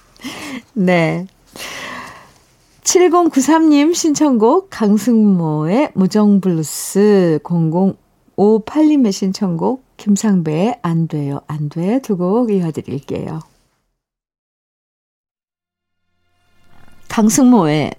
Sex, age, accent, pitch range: female, 50-69, native, 165-245 Hz